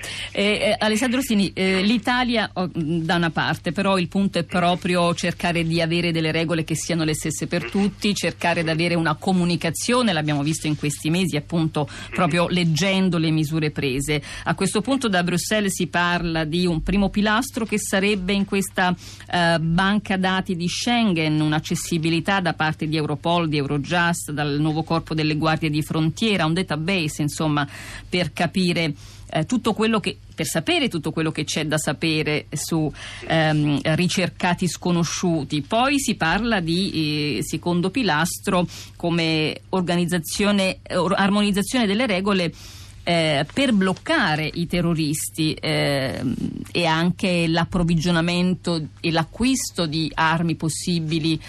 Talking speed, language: 145 wpm, Italian